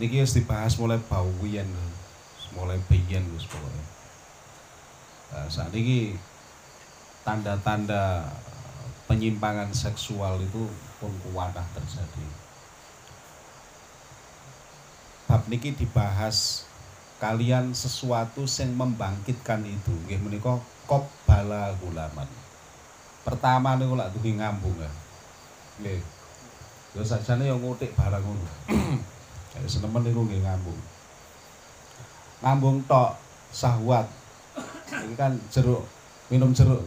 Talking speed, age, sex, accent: 95 wpm, 40-59, male, native